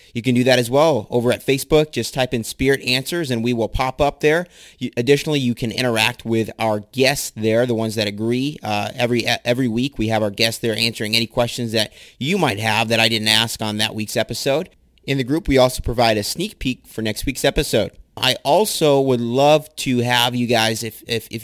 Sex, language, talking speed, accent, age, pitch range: male, English, 225 wpm, American, 30-49, 110-130 Hz